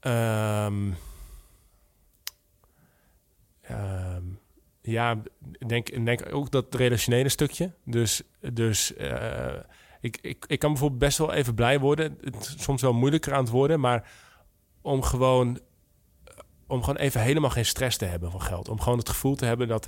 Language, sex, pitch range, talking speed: Dutch, male, 110-130 Hz, 150 wpm